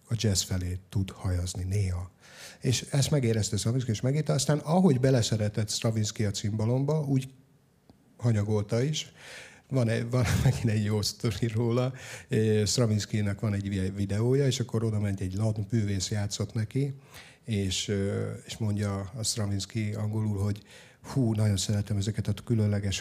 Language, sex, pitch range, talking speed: Hungarian, male, 105-135 Hz, 140 wpm